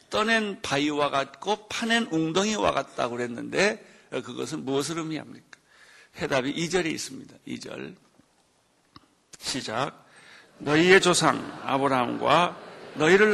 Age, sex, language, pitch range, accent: 60-79, male, Korean, 155-215 Hz, native